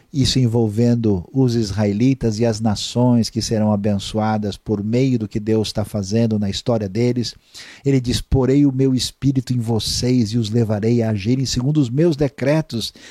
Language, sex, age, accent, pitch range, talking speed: Portuguese, male, 50-69, Brazilian, 110-140 Hz, 165 wpm